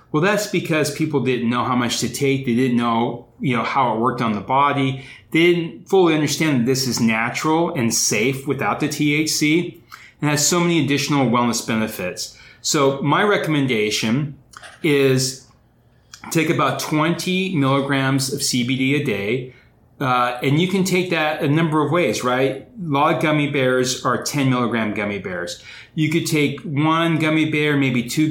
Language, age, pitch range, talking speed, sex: English, 30-49, 125-150 Hz, 175 wpm, male